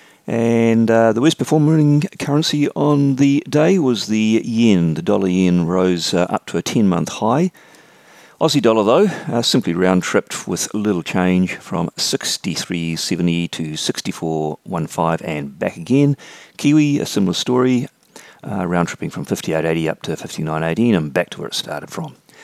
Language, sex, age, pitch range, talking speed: English, male, 40-59, 80-115 Hz, 145 wpm